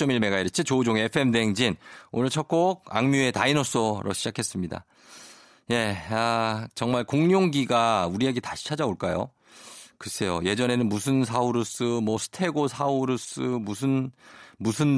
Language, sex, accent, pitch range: Korean, male, native, 105-145 Hz